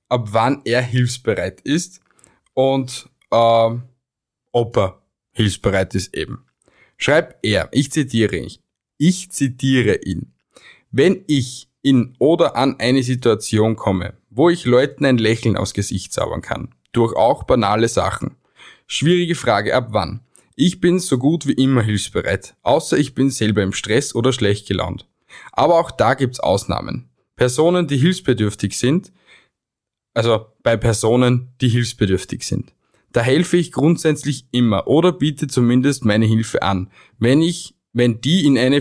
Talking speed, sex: 145 wpm, male